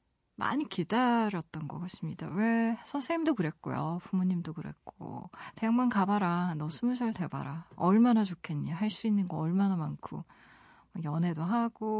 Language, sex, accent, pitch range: Korean, female, native, 165-220 Hz